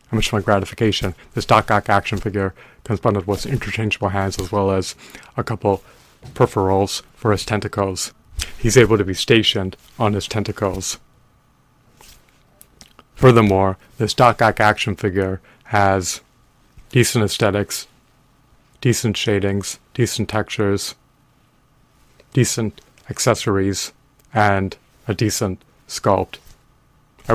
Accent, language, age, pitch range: American, English, 30-49, 100-120 Hz